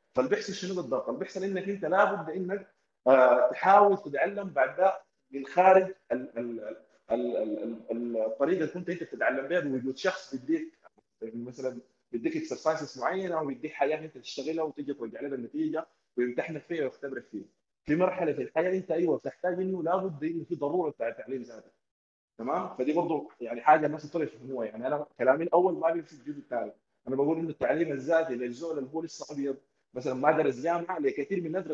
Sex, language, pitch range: male, Arabic, 135-180 Hz